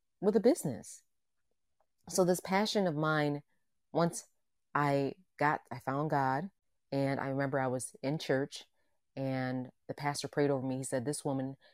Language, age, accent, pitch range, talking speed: English, 30-49, American, 130-150 Hz, 160 wpm